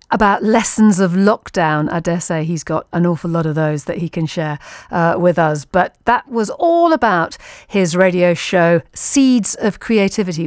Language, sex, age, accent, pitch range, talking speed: English, female, 40-59, British, 165-230 Hz, 185 wpm